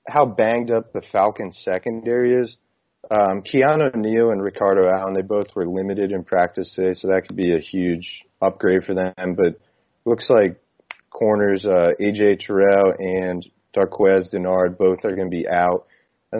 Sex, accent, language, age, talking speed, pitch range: male, American, English, 30-49, 170 wpm, 95-115 Hz